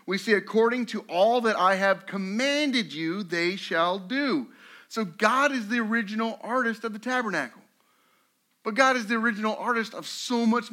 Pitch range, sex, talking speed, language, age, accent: 175-240 Hz, male, 175 wpm, English, 50-69, American